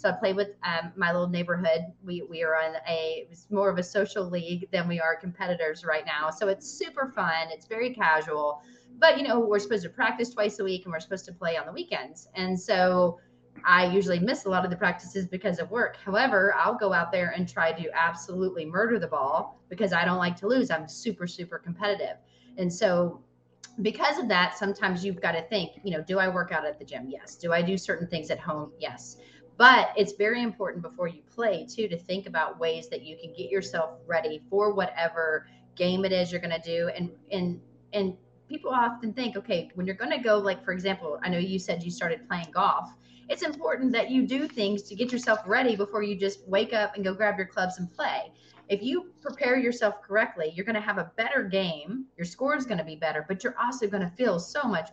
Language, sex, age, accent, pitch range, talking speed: English, female, 30-49, American, 165-210 Hz, 230 wpm